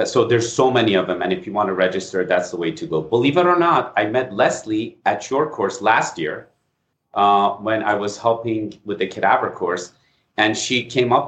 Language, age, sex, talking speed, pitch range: English, 30-49, male, 225 wpm, 100-125 Hz